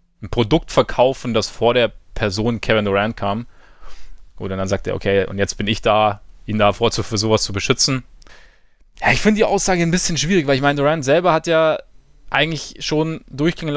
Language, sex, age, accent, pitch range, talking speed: German, male, 20-39, German, 120-145 Hz, 200 wpm